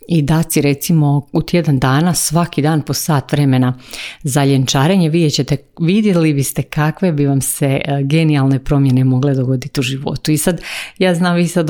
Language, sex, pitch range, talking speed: Croatian, female, 140-160 Hz, 175 wpm